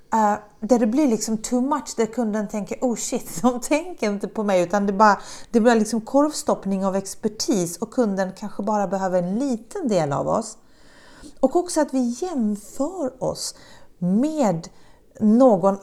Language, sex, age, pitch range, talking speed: Swedish, female, 30-49, 195-255 Hz, 165 wpm